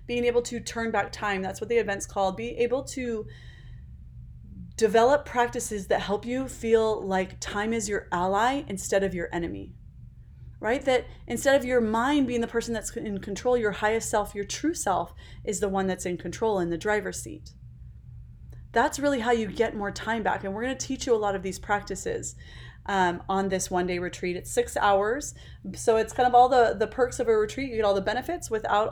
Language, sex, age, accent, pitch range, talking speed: English, female, 30-49, American, 190-235 Hz, 210 wpm